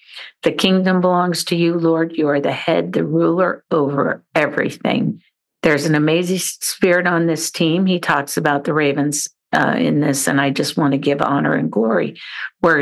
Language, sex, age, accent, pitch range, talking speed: English, female, 50-69, American, 150-190 Hz, 185 wpm